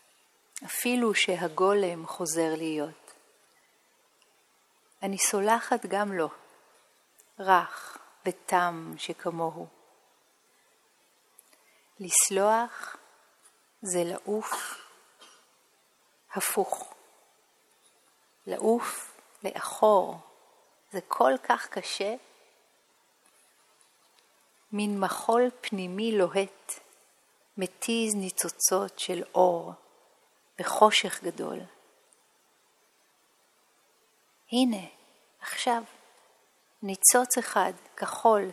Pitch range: 180-230 Hz